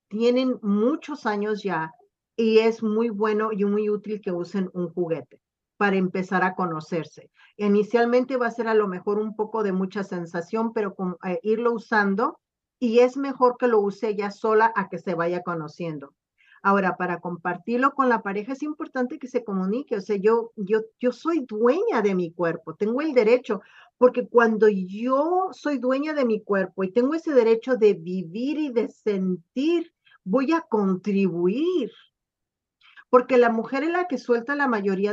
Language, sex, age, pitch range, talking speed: Spanish, female, 40-59, 195-255 Hz, 175 wpm